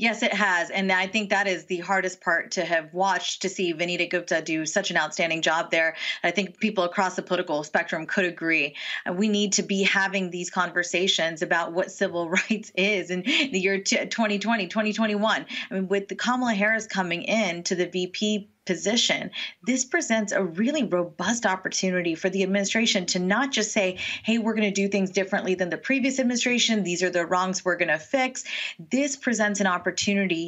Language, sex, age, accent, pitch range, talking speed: English, female, 30-49, American, 180-215 Hz, 195 wpm